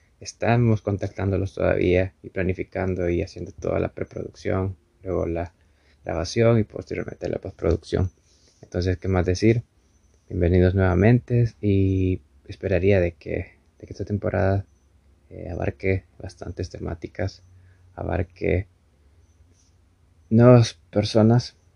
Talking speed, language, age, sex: 105 wpm, Spanish, 20-39, male